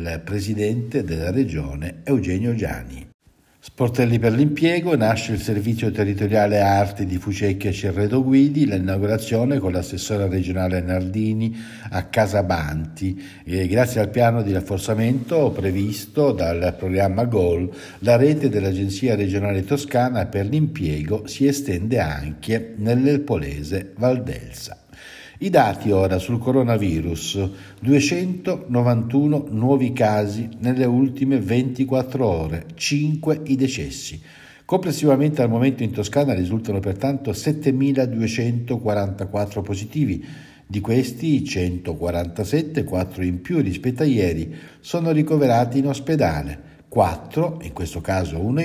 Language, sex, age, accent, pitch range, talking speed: Italian, male, 60-79, native, 95-135 Hz, 110 wpm